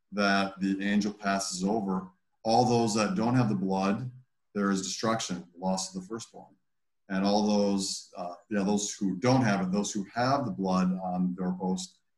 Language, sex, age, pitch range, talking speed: English, male, 40-59, 95-115 Hz, 180 wpm